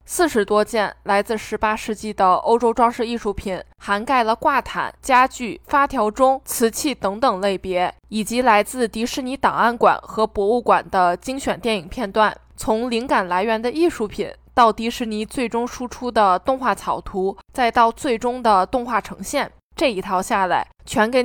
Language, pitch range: Chinese, 205-255 Hz